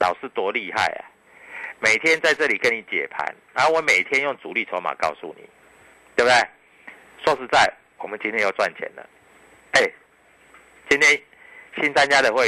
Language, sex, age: Chinese, male, 50-69